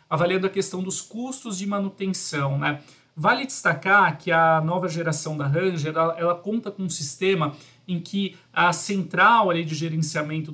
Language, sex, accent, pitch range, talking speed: Portuguese, male, Brazilian, 160-200 Hz, 155 wpm